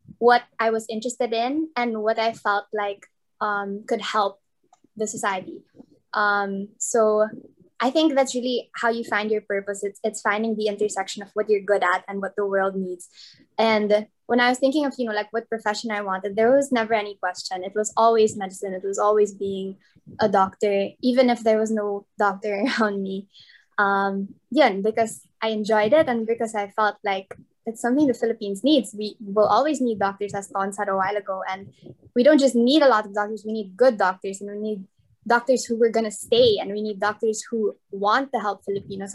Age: 10-29